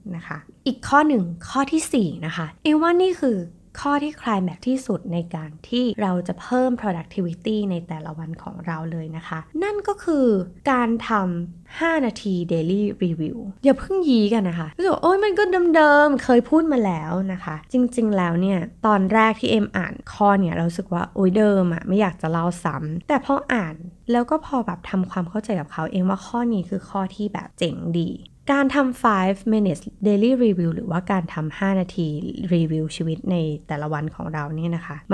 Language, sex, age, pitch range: Thai, female, 20-39, 170-235 Hz